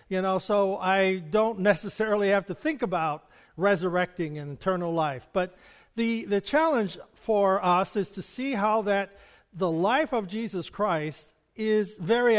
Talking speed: 155 wpm